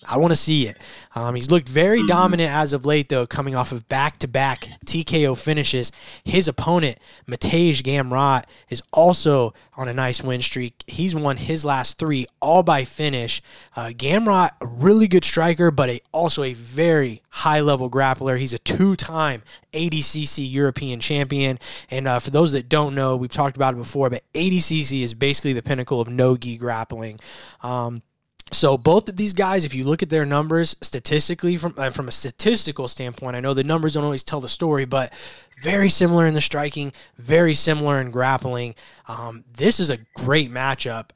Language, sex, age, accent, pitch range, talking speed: English, male, 20-39, American, 125-155 Hz, 175 wpm